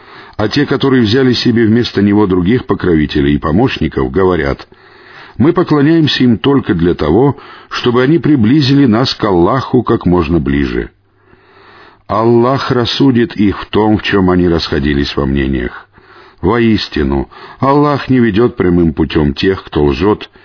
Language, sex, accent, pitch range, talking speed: Russian, male, native, 95-125 Hz, 140 wpm